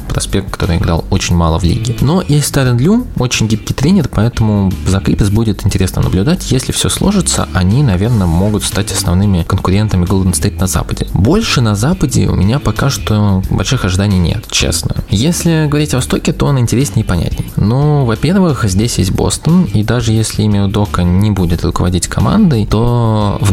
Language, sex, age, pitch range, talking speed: Russian, male, 20-39, 95-125 Hz, 180 wpm